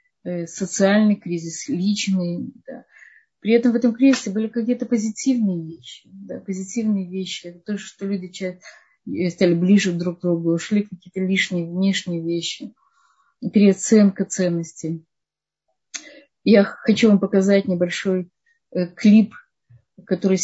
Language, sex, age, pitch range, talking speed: Russian, female, 30-49, 180-220 Hz, 110 wpm